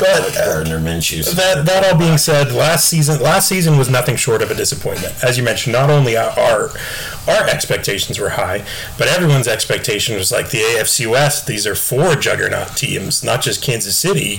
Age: 30-49